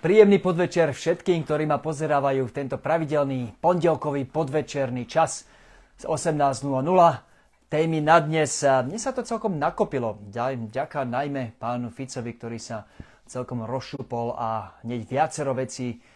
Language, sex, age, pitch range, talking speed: Slovak, male, 30-49, 115-145 Hz, 125 wpm